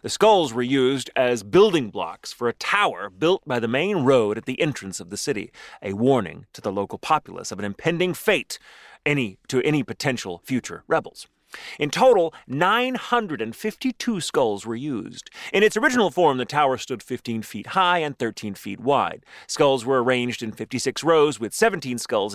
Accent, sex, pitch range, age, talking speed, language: American, male, 115-190 Hz, 30-49, 175 wpm, English